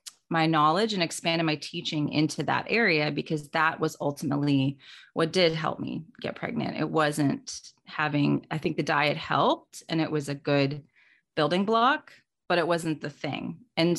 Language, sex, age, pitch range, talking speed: Persian, female, 30-49, 155-195 Hz, 170 wpm